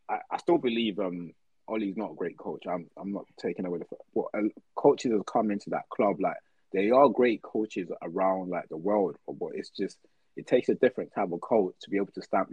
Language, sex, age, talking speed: English, male, 20-39, 220 wpm